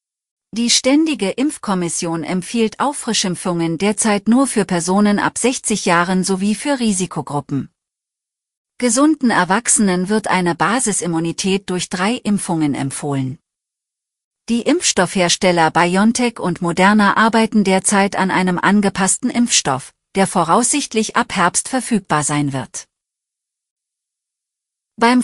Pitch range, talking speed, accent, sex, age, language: 175-230 Hz, 100 wpm, German, female, 40-59, German